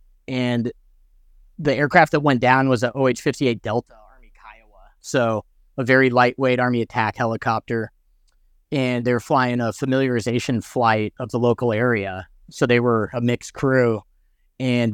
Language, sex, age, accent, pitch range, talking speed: English, male, 30-49, American, 115-135 Hz, 150 wpm